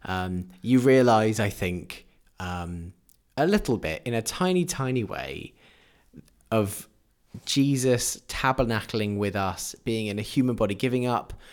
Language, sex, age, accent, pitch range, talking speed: English, male, 20-39, British, 95-120 Hz, 135 wpm